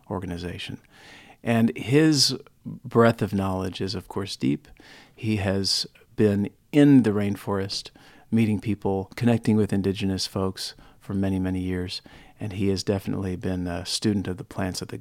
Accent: American